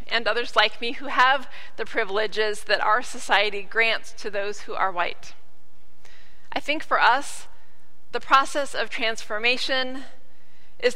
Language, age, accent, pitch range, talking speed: English, 40-59, American, 195-255 Hz, 140 wpm